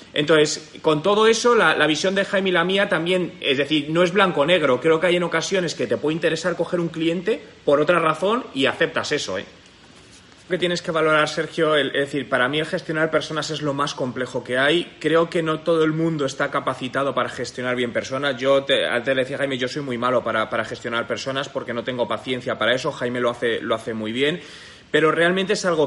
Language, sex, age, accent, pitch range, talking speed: Spanish, male, 30-49, Spanish, 130-165 Hz, 230 wpm